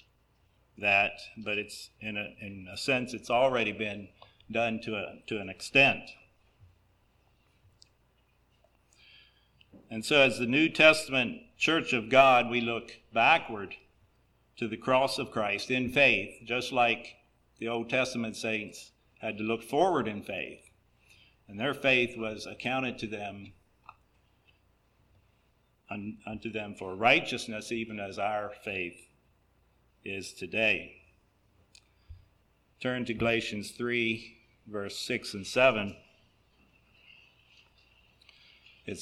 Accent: American